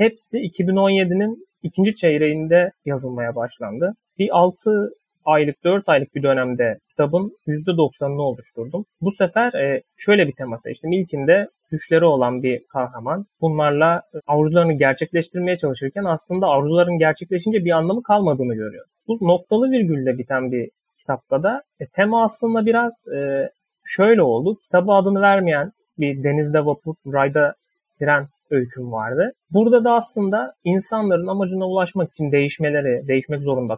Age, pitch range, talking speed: 30-49, 135-195 Hz, 125 wpm